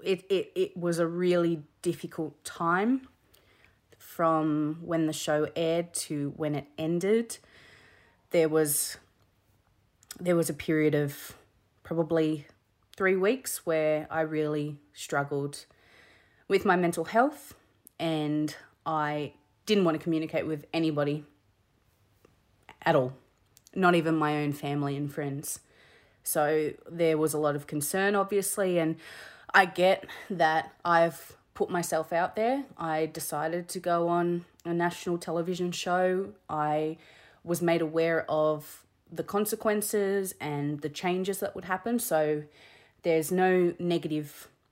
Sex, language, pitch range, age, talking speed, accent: female, English, 150-180 Hz, 20-39, 125 wpm, Australian